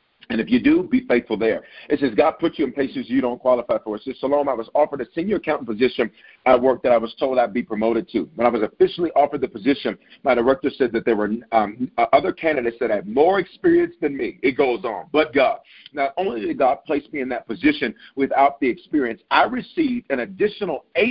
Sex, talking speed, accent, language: male, 235 wpm, American, English